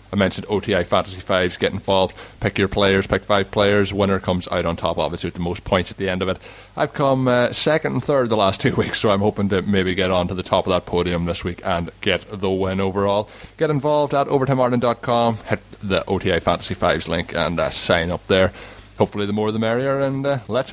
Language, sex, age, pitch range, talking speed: English, male, 20-39, 95-115 Hz, 235 wpm